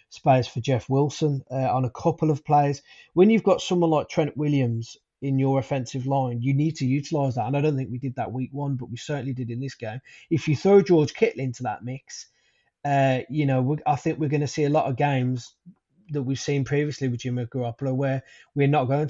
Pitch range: 135-155 Hz